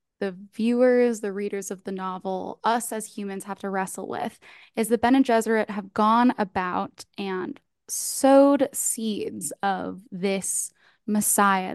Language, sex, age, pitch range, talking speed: English, female, 10-29, 195-220 Hz, 140 wpm